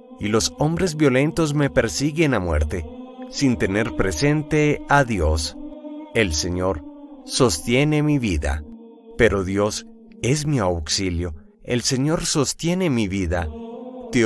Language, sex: English, male